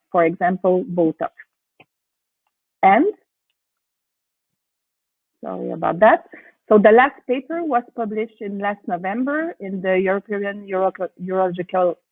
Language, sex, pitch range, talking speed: English, female, 195-240 Hz, 100 wpm